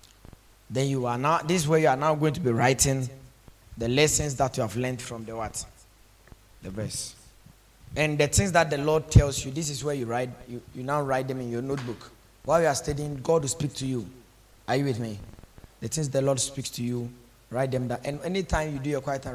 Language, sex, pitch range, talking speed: English, male, 110-140 Hz, 235 wpm